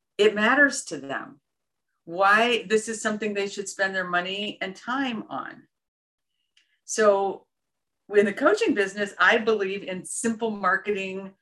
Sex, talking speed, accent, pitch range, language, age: female, 135 wpm, American, 190-260 Hz, English, 50-69